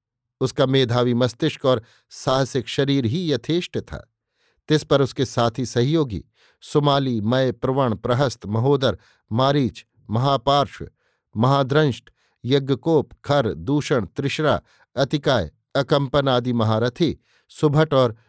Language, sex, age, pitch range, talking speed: Hindi, male, 50-69, 115-140 Hz, 105 wpm